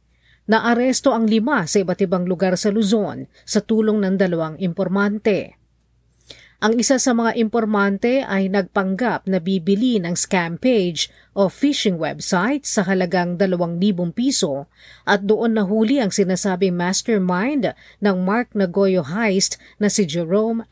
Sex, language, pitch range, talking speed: female, Filipino, 180-225 Hz, 135 wpm